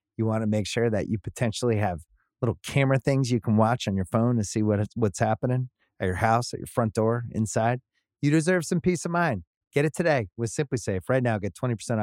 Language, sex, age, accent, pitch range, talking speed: English, male, 30-49, American, 100-140 Hz, 240 wpm